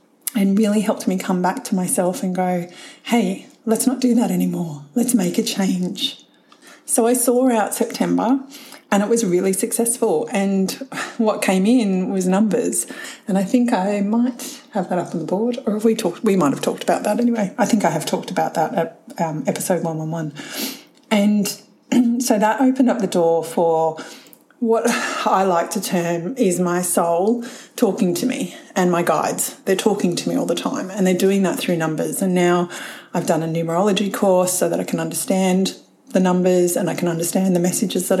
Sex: female